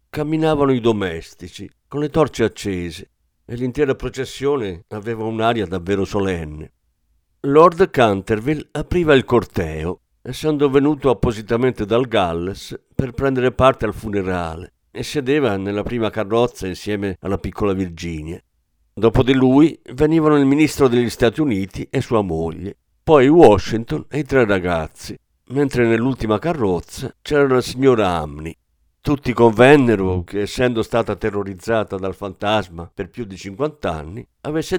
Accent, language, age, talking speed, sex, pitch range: native, Italian, 50-69, 135 wpm, male, 95-135 Hz